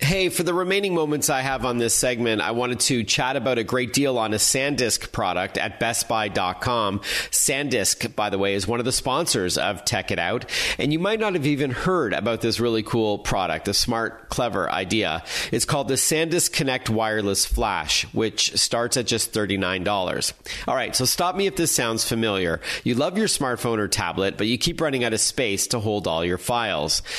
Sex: male